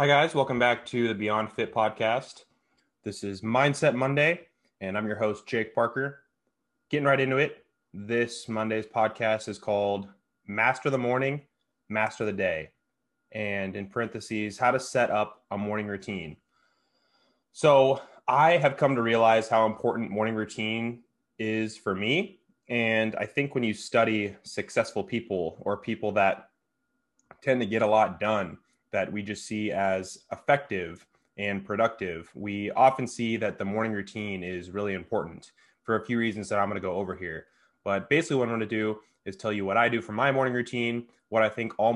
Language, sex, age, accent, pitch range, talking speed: English, male, 20-39, American, 100-120 Hz, 175 wpm